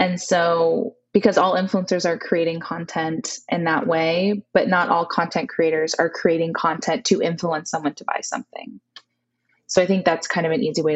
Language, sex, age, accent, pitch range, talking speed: English, female, 20-39, American, 165-205 Hz, 185 wpm